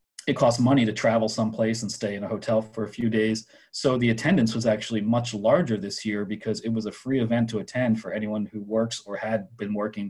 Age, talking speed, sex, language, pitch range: 30-49, 240 wpm, male, English, 100-115 Hz